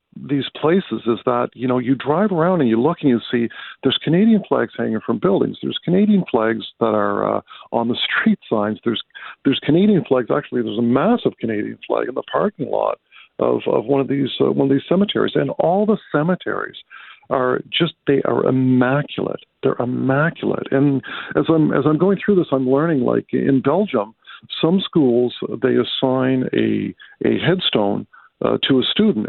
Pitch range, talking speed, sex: 120-160 Hz, 185 wpm, male